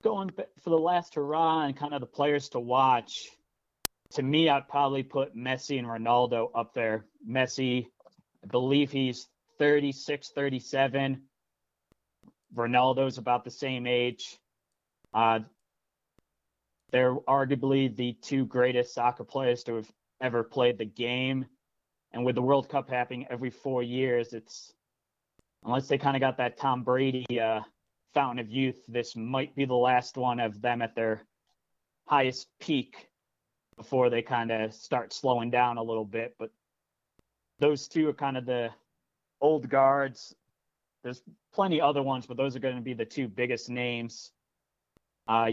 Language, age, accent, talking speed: English, 30-49, American, 150 wpm